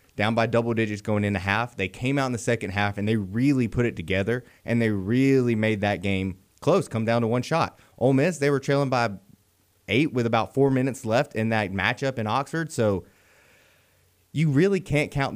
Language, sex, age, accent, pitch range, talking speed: English, male, 20-39, American, 105-125 Hz, 210 wpm